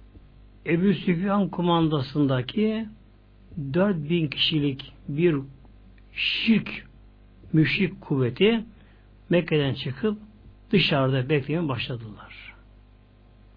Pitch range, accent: 115-185 Hz, native